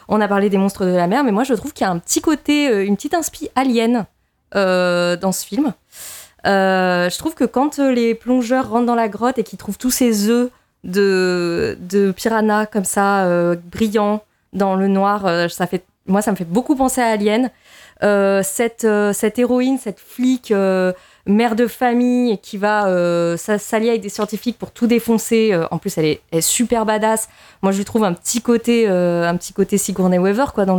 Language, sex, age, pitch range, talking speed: French, female, 20-39, 190-240 Hz, 210 wpm